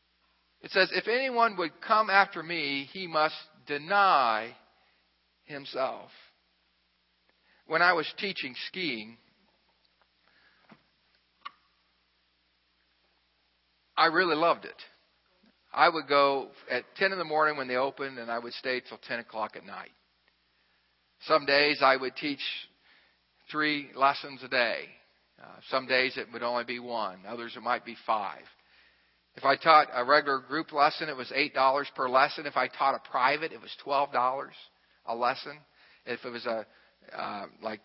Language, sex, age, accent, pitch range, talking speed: English, male, 50-69, American, 115-160 Hz, 145 wpm